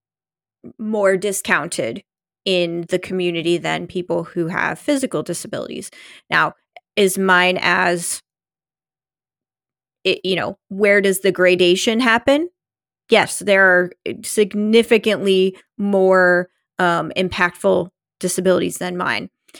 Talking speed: 100 wpm